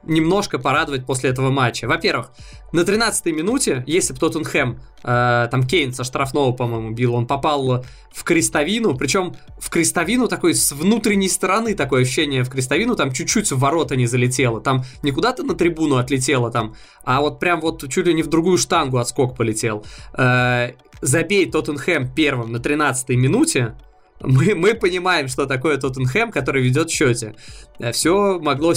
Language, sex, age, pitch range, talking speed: Russian, male, 20-39, 130-170 Hz, 160 wpm